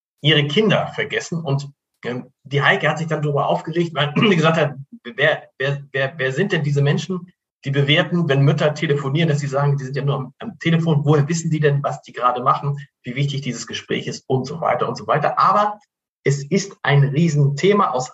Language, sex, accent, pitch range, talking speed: German, male, German, 140-170 Hz, 200 wpm